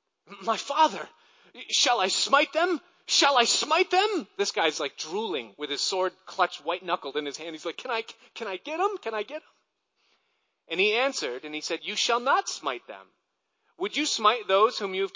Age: 40-59